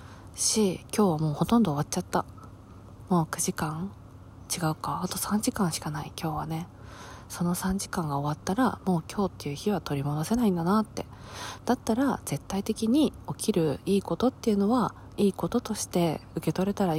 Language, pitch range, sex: Japanese, 110-190 Hz, female